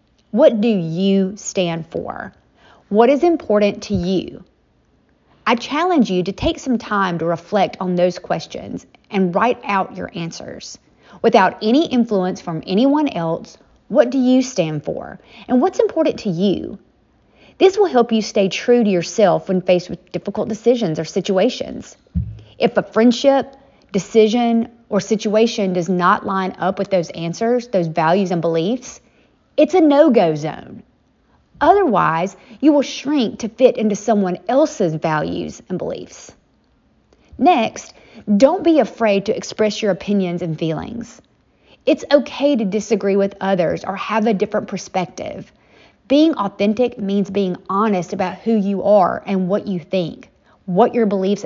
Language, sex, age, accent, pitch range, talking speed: English, female, 30-49, American, 185-245 Hz, 150 wpm